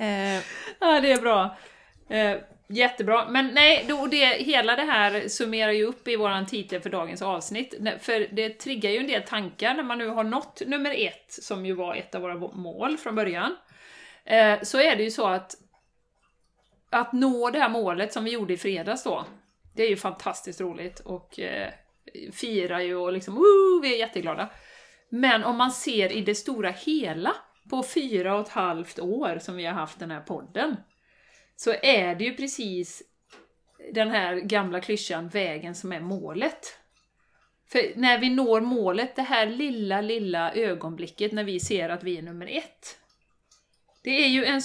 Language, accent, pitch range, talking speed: Swedish, native, 190-265 Hz, 180 wpm